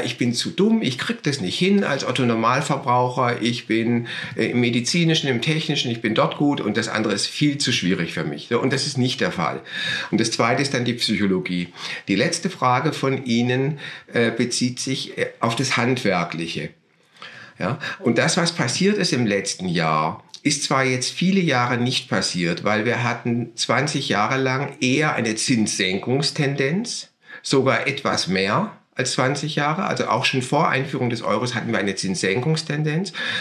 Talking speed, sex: 165 wpm, male